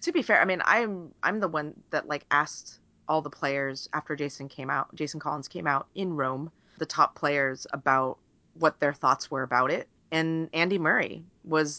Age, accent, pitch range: 30-49, American, 145-185 Hz